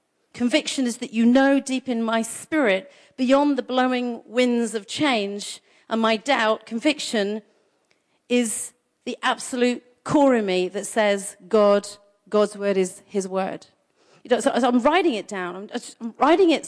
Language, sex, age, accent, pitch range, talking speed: English, female, 40-59, British, 200-255 Hz, 160 wpm